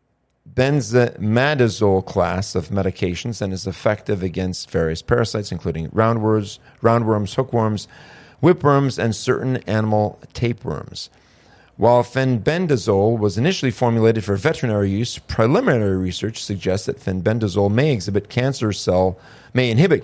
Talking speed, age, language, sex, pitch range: 115 wpm, 40-59, English, male, 95-120 Hz